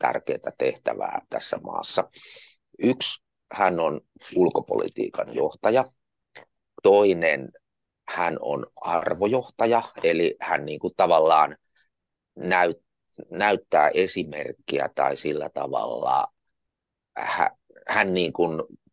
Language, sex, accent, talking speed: Finnish, male, native, 70 wpm